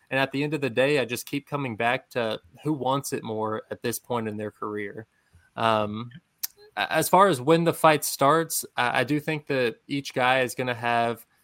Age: 20-39